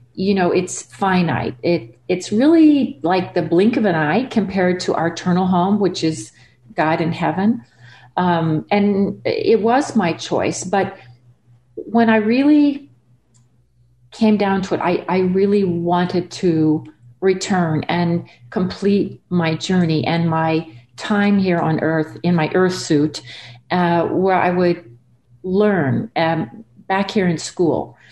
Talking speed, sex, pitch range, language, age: 145 wpm, female, 150-200 Hz, English, 50-69